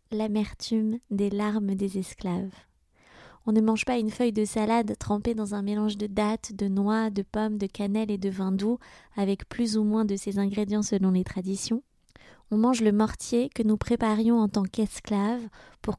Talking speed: 190 wpm